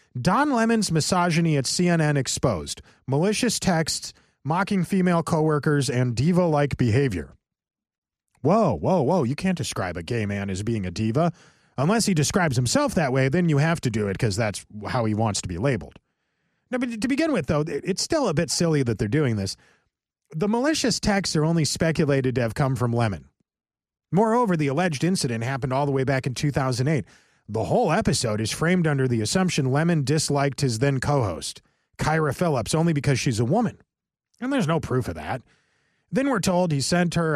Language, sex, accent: English, male, American